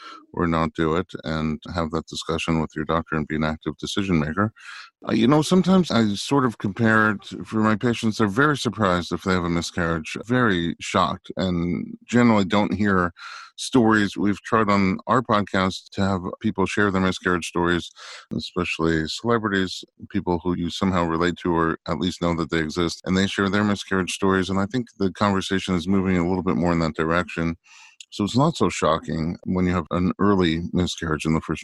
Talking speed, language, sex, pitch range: 200 wpm, English, male, 80-100 Hz